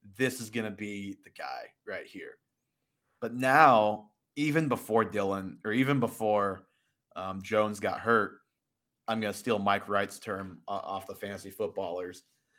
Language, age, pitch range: English, 30-49, 100-130 Hz